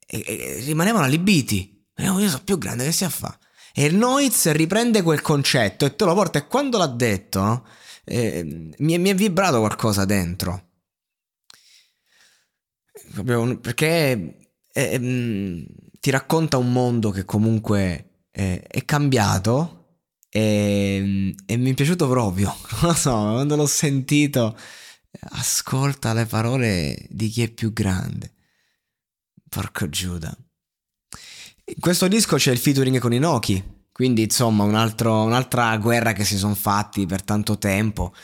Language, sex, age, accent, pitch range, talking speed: Italian, male, 20-39, native, 100-145 Hz, 135 wpm